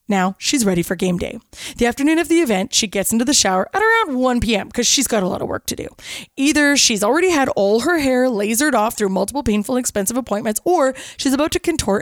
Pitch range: 205-275 Hz